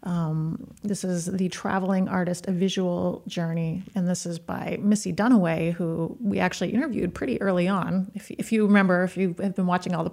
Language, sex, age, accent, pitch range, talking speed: English, female, 30-49, American, 170-200 Hz, 195 wpm